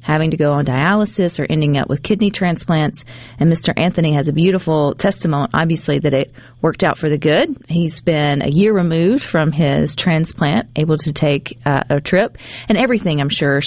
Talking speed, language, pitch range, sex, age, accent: 195 wpm, English, 145-195 Hz, female, 40-59, American